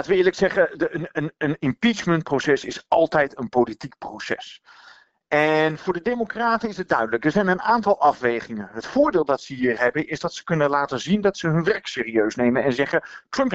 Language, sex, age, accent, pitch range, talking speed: Dutch, male, 50-69, Dutch, 140-210 Hz, 205 wpm